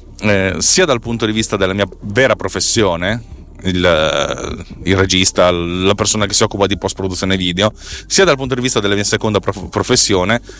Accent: native